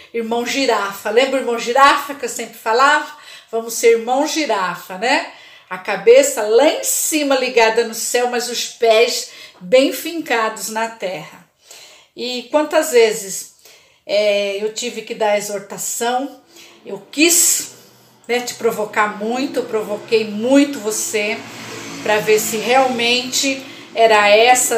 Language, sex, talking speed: Portuguese, female, 130 wpm